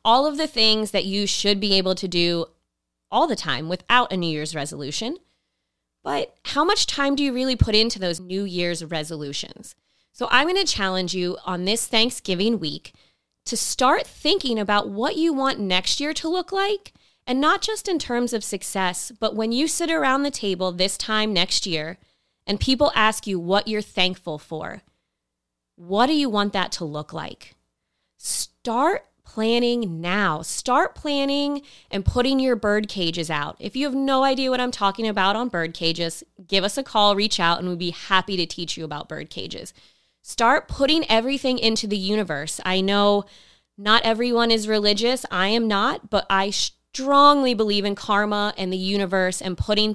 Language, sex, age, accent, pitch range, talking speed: English, female, 20-39, American, 175-240 Hz, 185 wpm